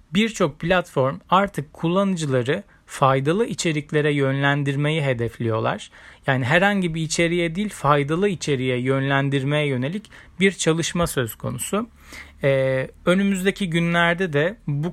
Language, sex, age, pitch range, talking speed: Turkish, male, 40-59, 130-170 Hz, 105 wpm